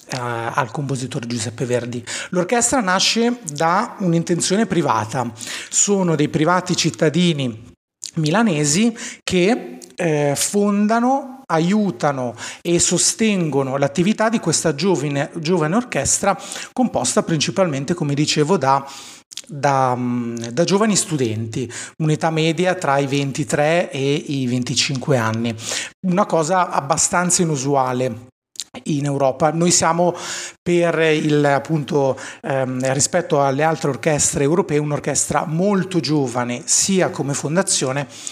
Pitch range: 135-180 Hz